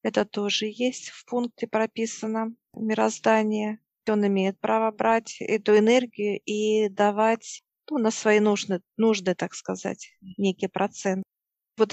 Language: Russian